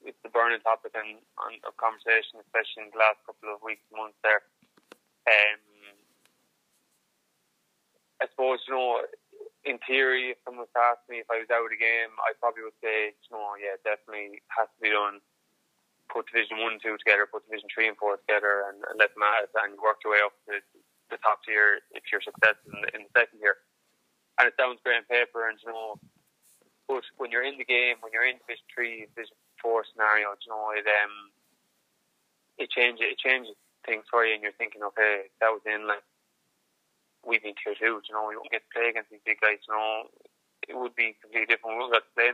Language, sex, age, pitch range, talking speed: English, male, 20-39, 105-120 Hz, 220 wpm